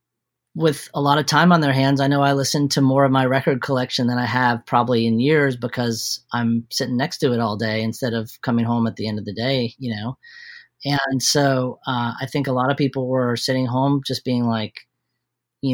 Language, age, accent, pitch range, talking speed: English, 40-59, American, 120-145 Hz, 230 wpm